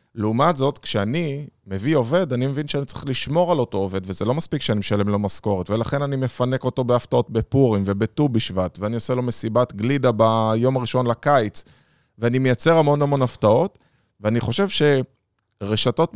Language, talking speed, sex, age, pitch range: Hebrew, 165 wpm, male, 20-39, 110-140 Hz